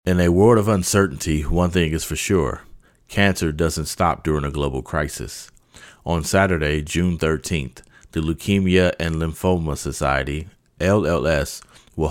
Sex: male